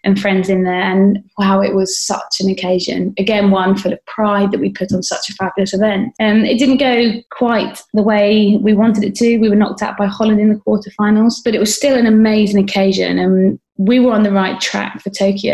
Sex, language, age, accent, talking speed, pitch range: female, English, 20-39, British, 230 wpm, 190-220 Hz